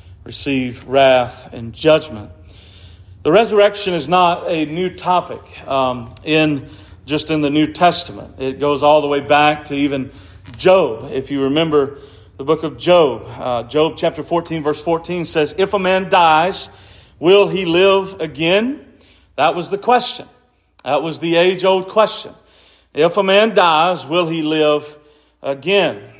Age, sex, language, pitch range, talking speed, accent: 40-59, male, English, 145-190 Hz, 150 wpm, American